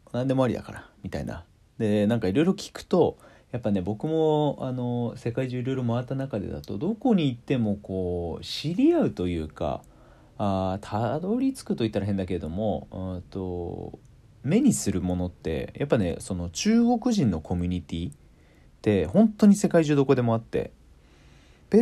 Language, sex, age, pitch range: Japanese, male, 40-59, 90-145 Hz